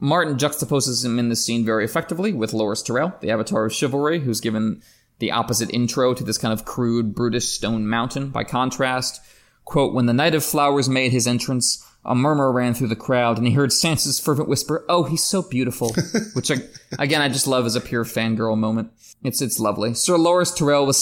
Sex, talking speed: male, 205 wpm